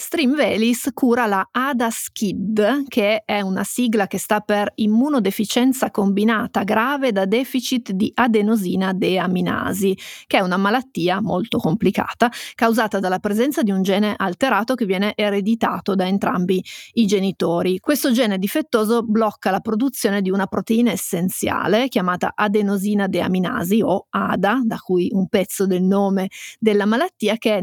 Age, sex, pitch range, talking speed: 30-49, female, 195-230 Hz, 140 wpm